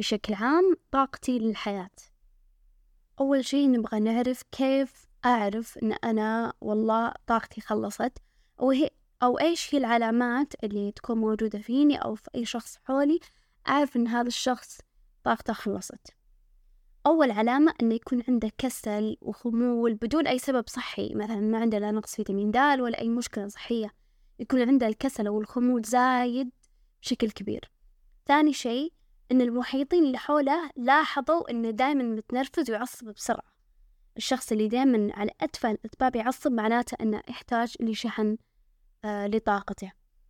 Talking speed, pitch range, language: 135 wpm, 220-270 Hz, Arabic